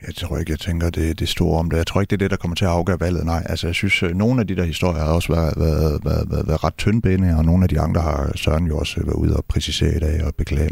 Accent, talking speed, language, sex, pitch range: native, 315 wpm, Danish, male, 85-115 Hz